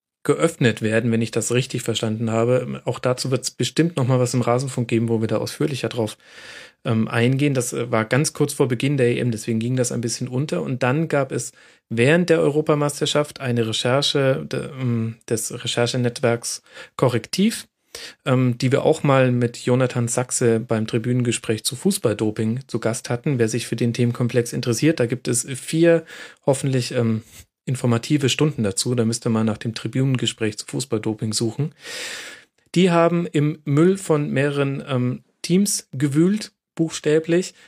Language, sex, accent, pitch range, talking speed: German, male, German, 120-150 Hz, 165 wpm